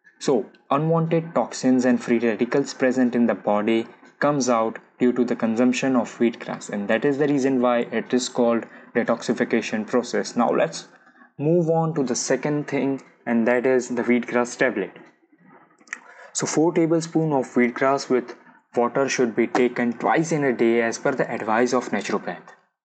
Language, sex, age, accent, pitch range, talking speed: English, male, 20-39, Indian, 120-150 Hz, 165 wpm